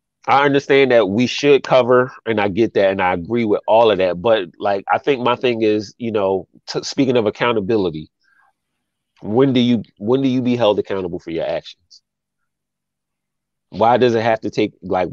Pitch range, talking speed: 100-130 Hz, 190 wpm